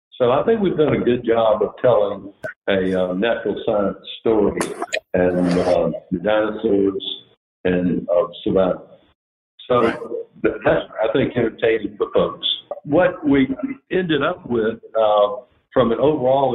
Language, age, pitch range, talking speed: English, 60-79, 105-155 Hz, 150 wpm